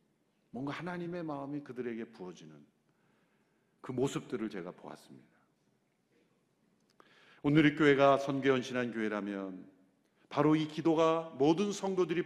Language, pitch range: Korean, 135-190 Hz